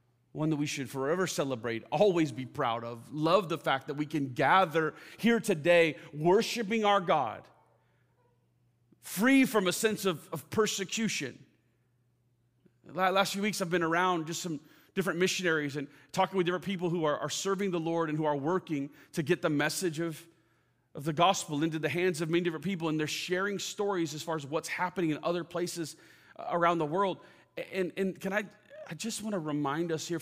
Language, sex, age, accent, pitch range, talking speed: English, male, 40-59, American, 130-180 Hz, 195 wpm